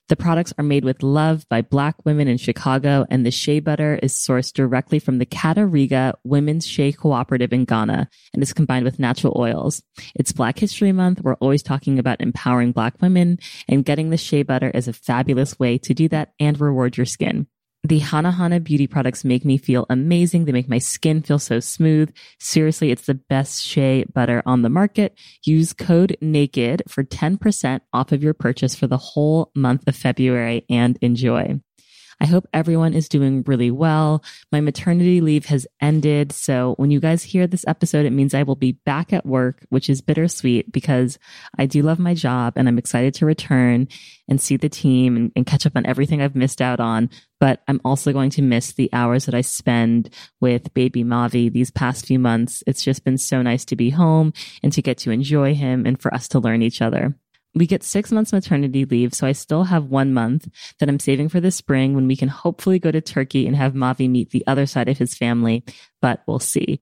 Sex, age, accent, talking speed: female, 20-39, American, 210 wpm